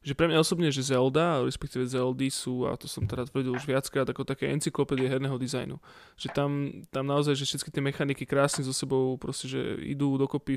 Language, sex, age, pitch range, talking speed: Slovak, male, 20-39, 130-140 Hz, 205 wpm